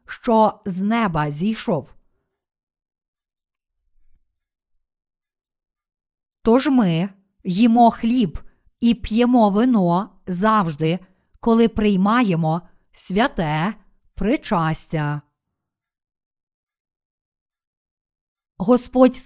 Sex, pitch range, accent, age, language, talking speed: female, 185-235 Hz, native, 50-69, Ukrainian, 55 wpm